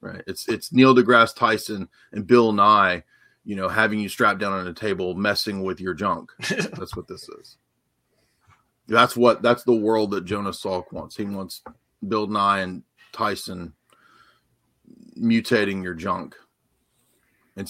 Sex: male